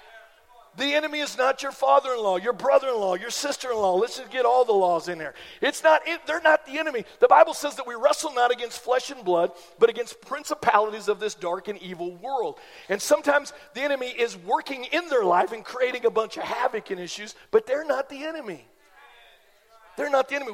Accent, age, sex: American, 50-69, male